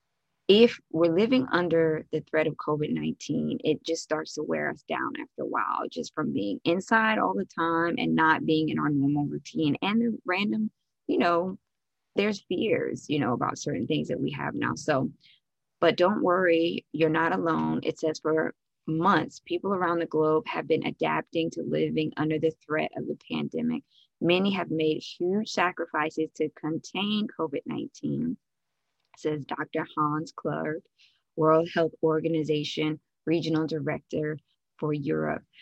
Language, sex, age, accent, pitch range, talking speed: English, female, 20-39, American, 150-170 Hz, 155 wpm